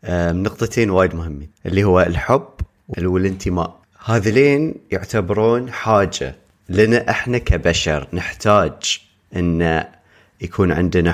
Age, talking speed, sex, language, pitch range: 30-49, 90 wpm, male, Arabic, 90-120 Hz